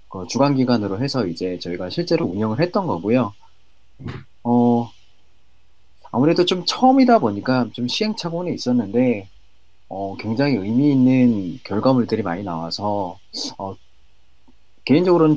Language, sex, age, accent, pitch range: Korean, male, 30-49, native, 105-150 Hz